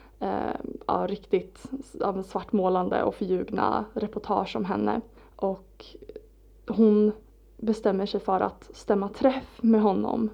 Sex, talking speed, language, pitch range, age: female, 120 wpm, Swedish, 195-225 Hz, 20-39